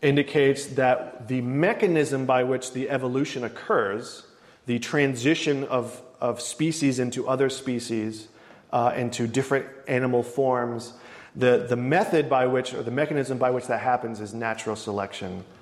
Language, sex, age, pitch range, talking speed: English, male, 30-49, 120-145 Hz, 140 wpm